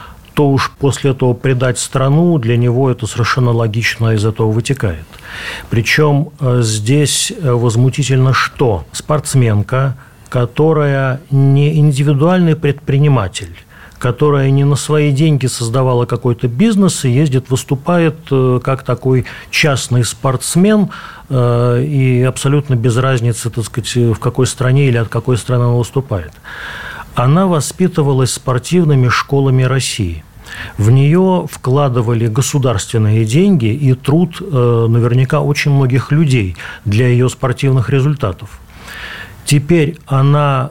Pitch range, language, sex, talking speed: 120-145 Hz, Russian, male, 110 wpm